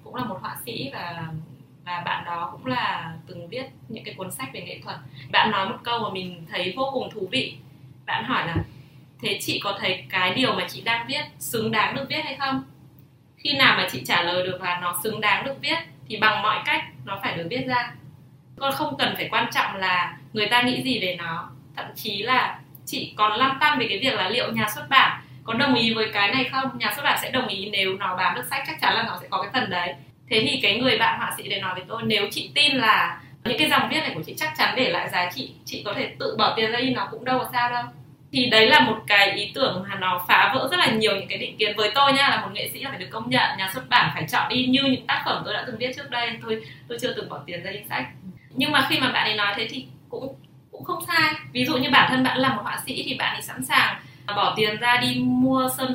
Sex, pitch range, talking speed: female, 180-255 Hz, 275 wpm